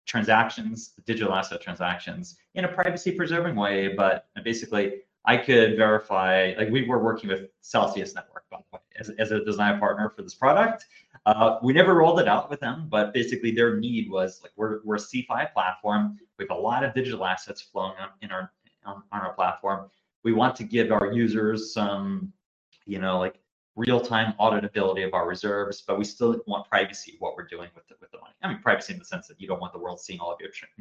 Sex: male